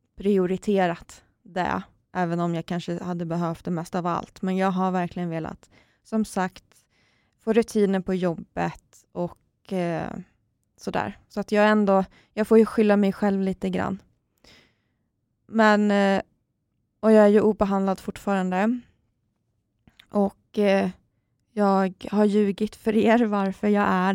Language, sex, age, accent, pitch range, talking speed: Swedish, female, 20-39, native, 170-205 Hz, 140 wpm